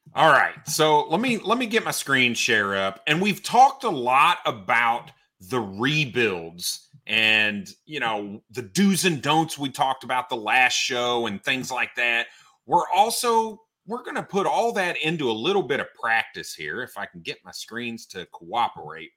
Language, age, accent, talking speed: English, 30-49, American, 190 wpm